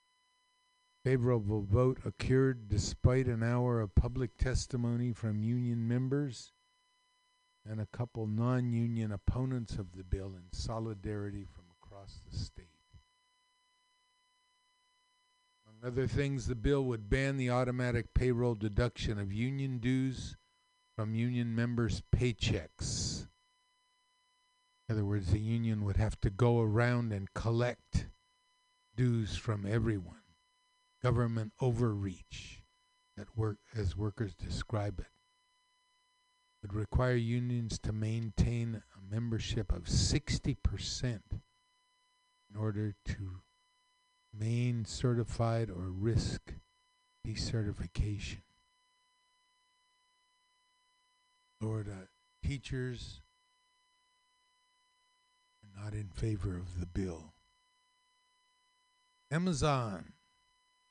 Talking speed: 95 wpm